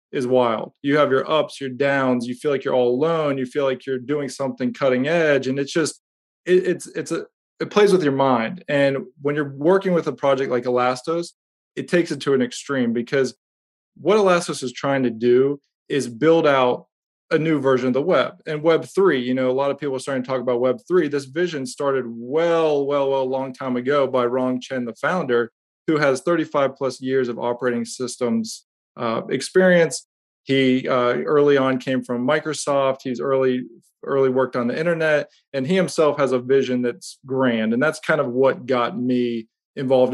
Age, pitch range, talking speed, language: 20-39, 125-150 Hz, 200 wpm, English